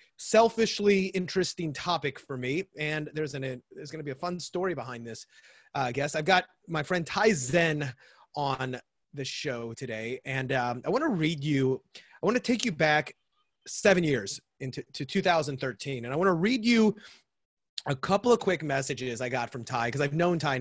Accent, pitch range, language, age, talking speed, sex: American, 130-180 Hz, English, 30-49, 180 wpm, male